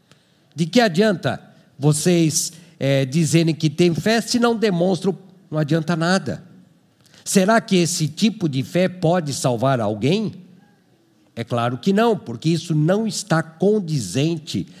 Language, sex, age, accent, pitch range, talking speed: Portuguese, male, 50-69, Brazilian, 150-185 Hz, 135 wpm